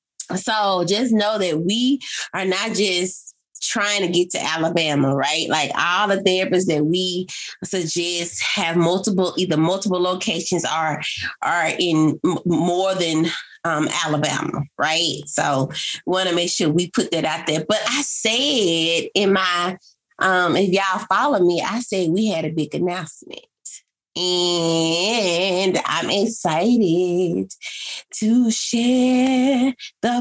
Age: 20-39